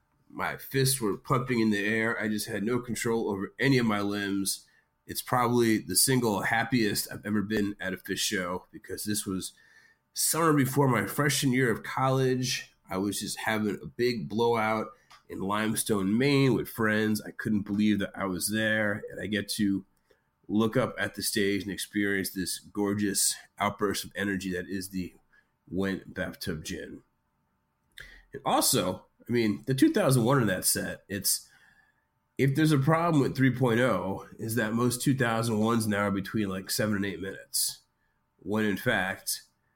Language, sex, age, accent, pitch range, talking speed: English, male, 30-49, American, 100-115 Hz, 170 wpm